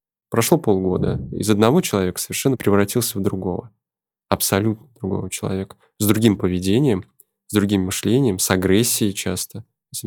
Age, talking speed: 20-39, 130 wpm